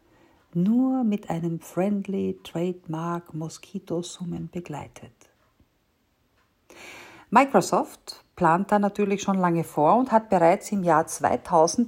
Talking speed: 100 wpm